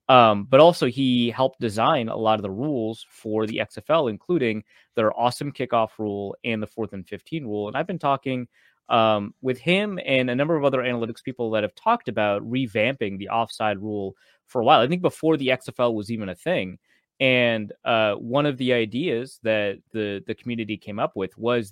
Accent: American